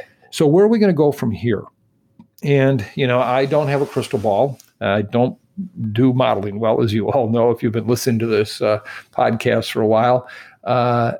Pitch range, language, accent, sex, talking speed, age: 115-130 Hz, English, American, male, 210 wpm, 50-69